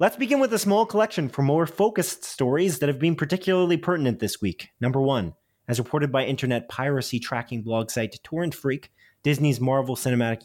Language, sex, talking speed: English, male, 185 wpm